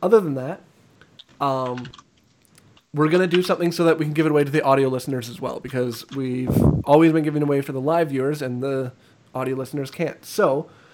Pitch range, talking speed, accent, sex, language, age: 125-155 Hz, 215 wpm, American, male, English, 20-39